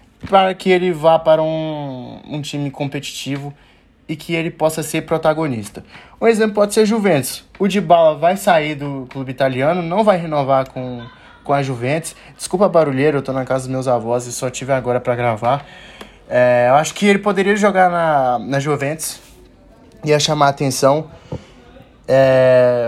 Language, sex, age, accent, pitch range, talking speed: Portuguese, male, 20-39, Brazilian, 135-180 Hz, 170 wpm